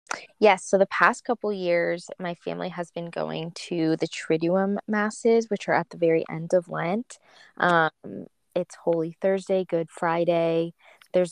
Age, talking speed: 20-39, 165 wpm